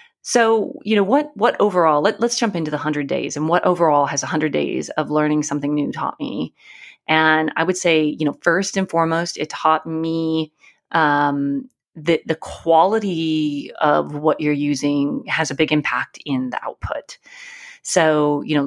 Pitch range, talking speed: 150-195 Hz, 175 wpm